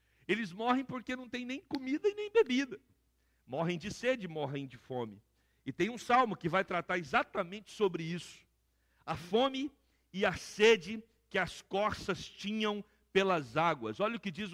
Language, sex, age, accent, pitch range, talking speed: Portuguese, male, 60-79, Brazilian, 160-240 Hz, 170 wpm